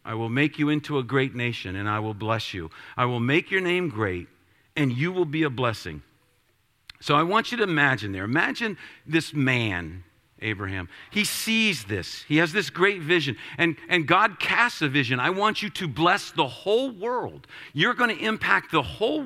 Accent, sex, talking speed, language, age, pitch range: American, male, 200 wpm, English, 50-69, 115-165 Hz